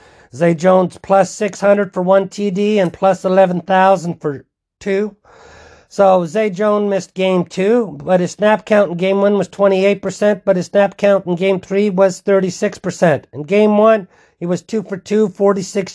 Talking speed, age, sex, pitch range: 170 wpm, 50-69, male, 180-210 Hz